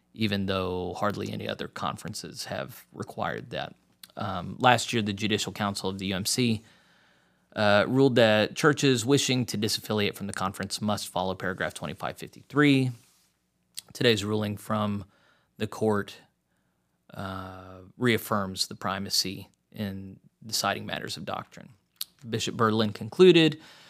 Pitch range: 100-130 Hz